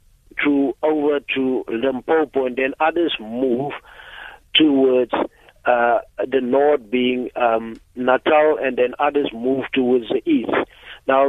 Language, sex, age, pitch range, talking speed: English, male, 60-79, 125-150 Hz, 120 wpm